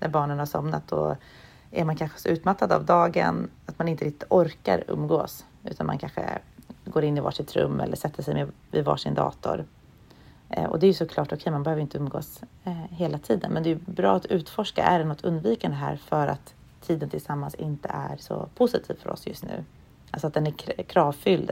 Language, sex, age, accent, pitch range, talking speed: Swedish, female, 30-49, native, 125-180 Hz, 205 wpm